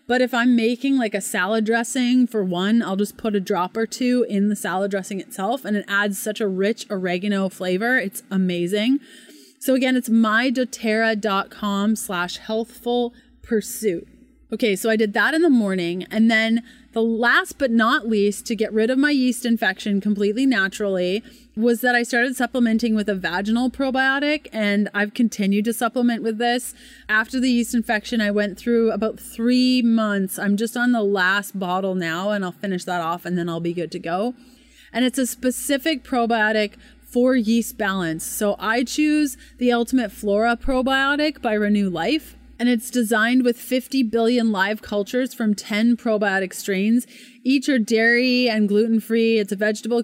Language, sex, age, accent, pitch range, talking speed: English, female, 30-49, American, 200-245 Hz, 175 wpm